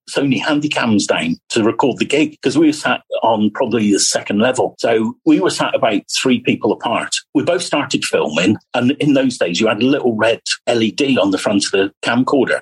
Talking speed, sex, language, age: 210 wpm, male, English, 50-69